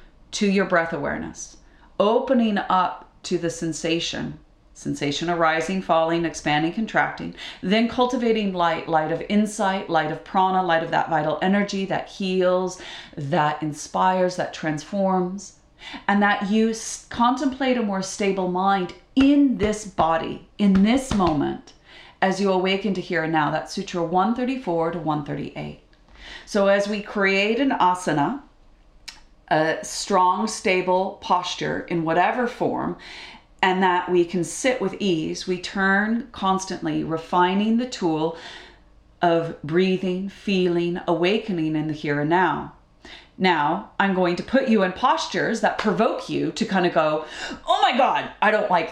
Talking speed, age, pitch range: 140 wpm, 40-59, 170-215 Hz